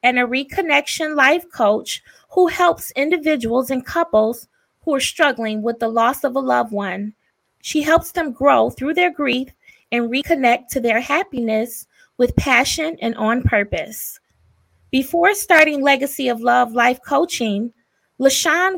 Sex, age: female, 20-39